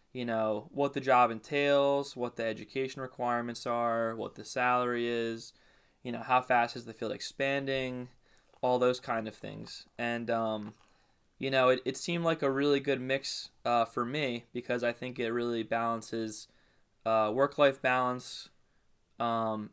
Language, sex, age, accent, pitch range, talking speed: English, male, 20-39, American, 115-125 Hz, 160 wpm